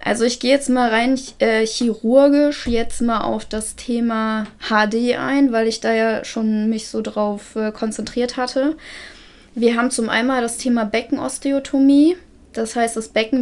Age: 20-39